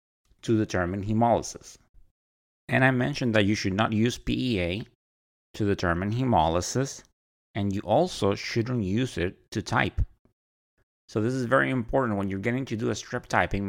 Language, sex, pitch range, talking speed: English, male, 90-115 Hz, 160 wpm